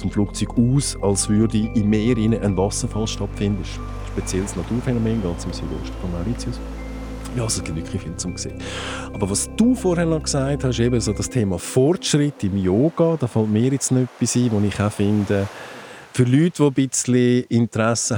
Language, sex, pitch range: English, male, 85-110 Hz